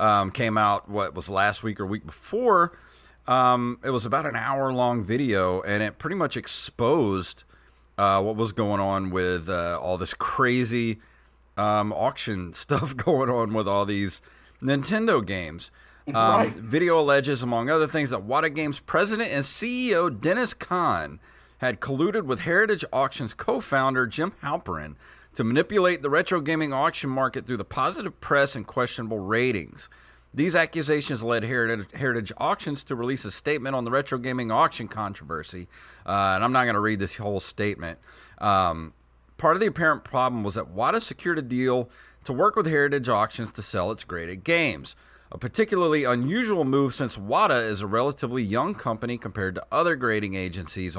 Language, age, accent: English, 40-59, American